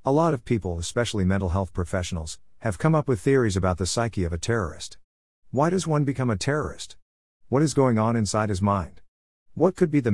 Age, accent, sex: 50-69, American, male